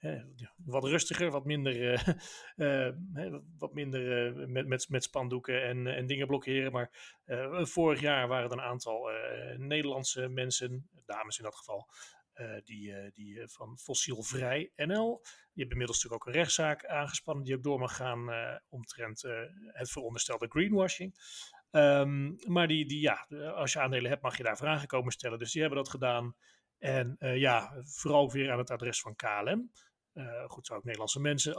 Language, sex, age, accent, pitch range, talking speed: Dutch, male, 40-59, Dutch, 125-150 Hz, 170 wpm